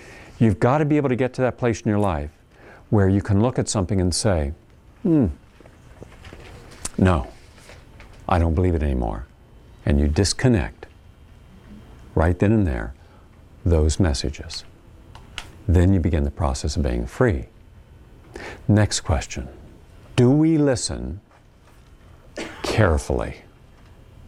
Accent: American